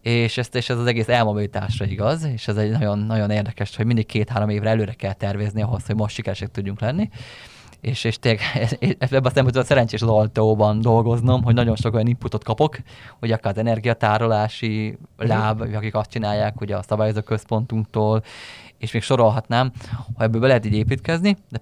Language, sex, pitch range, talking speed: Hungarian, male, 110-130 Hz, 170 wpm